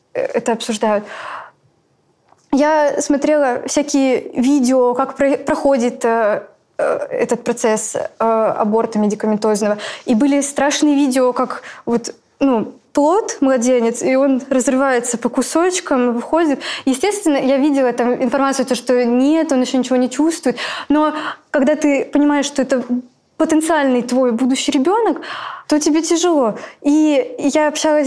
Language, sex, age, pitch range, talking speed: Russian, female, 20-39, 245-300 Hz, 125 wpm